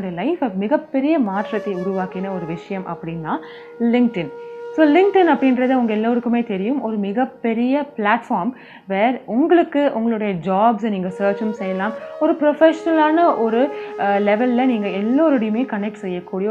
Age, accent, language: 20-39, native, Tamil